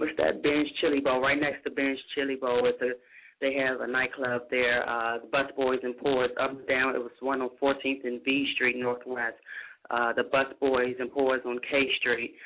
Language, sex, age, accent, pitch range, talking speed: English, female, 20-39, American, 130-150 Hz, 210 wpm